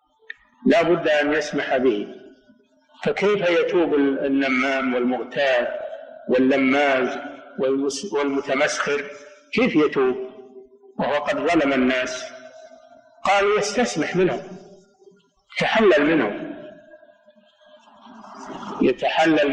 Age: 50-69